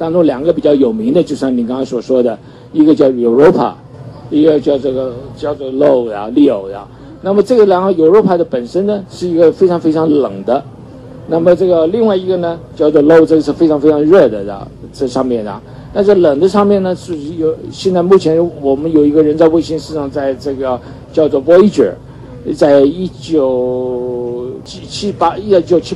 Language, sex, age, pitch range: Chinese, male, 50-69, 135-180 Hz